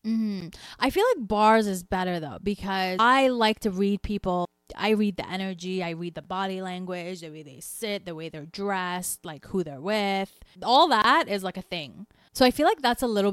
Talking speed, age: 220 wpm, 20-39